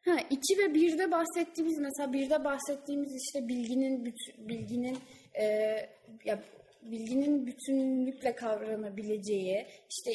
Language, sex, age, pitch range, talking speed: Turkish, female, 10-29, 215-310 Hz, 100 wpm